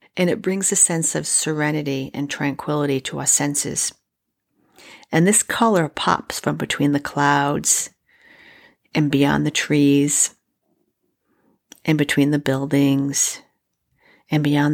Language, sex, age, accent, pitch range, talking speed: English, female, 40-59, American, 140-170 Hz, 120 wpm